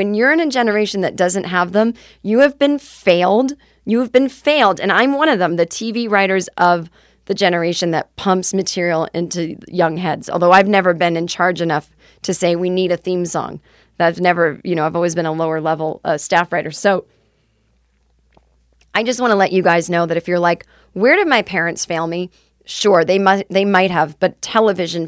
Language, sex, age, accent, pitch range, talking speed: English, female, 30-49, American, 165-205 Hz, 210 wpm